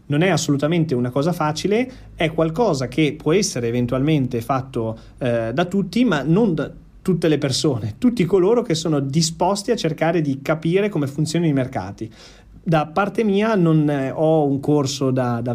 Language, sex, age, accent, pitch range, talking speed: Italian, male, 30-49, native, 125-160 Hz, 175 wpm